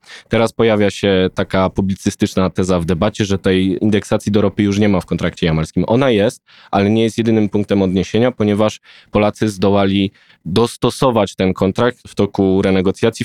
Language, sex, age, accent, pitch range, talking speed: Polish, male, 20-39, native, 95-115 Hz, 165 wpm